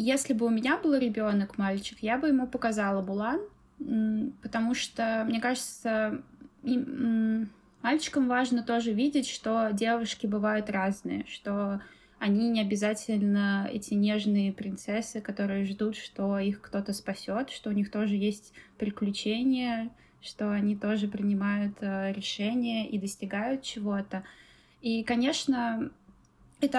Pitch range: 205-235 Hz